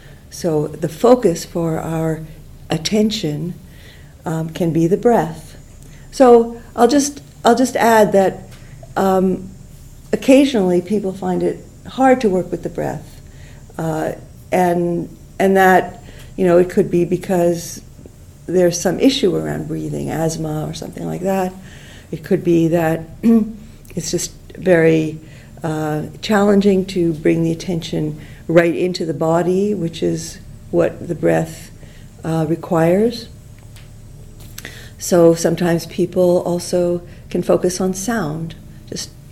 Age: 50-69